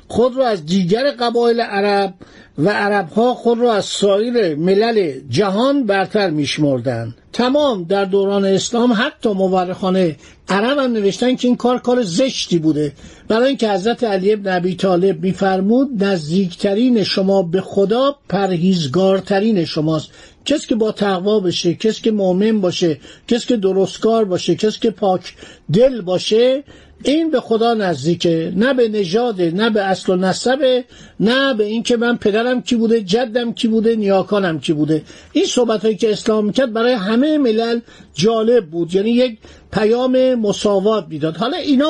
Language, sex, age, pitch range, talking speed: Persian, male, 50-69, 190-245 Hz, 150 wpm